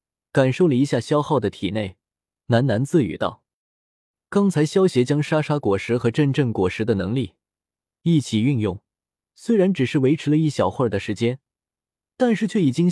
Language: Chinese